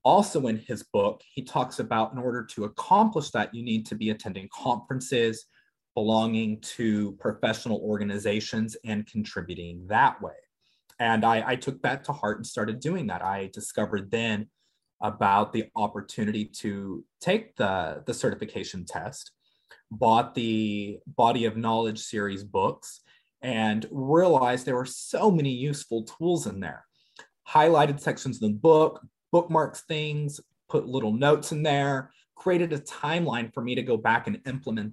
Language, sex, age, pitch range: English, male, 20-39, 110-155 Hz